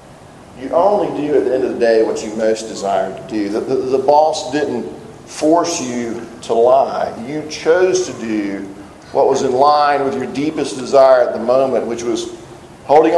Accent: American